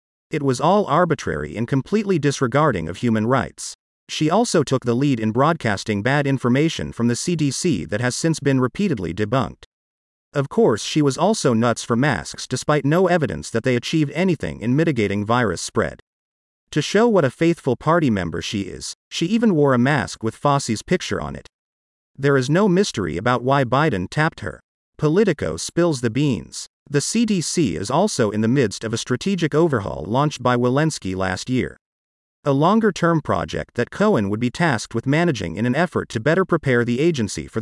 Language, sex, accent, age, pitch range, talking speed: English, male, American, 40-59, 115-165 Hz, 180 wpm